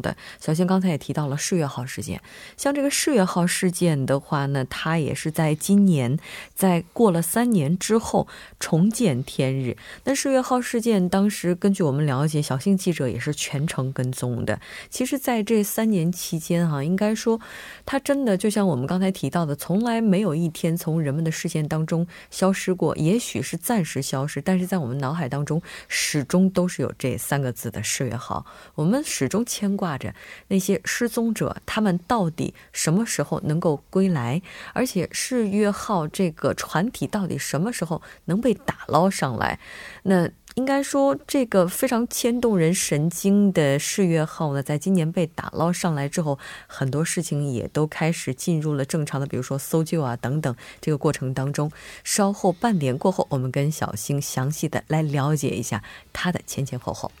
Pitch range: 140-195 Hz